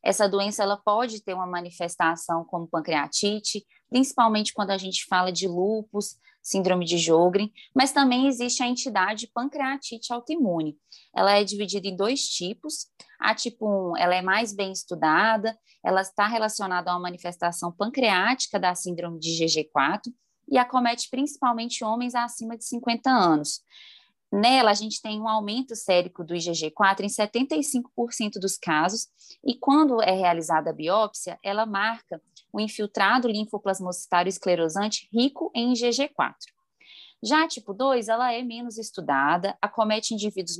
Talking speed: 140 wpm